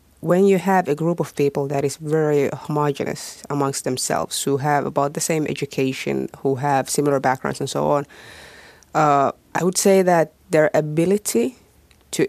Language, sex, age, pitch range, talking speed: Finnish, female, 30-49, 140-160 Hz, 165 wpm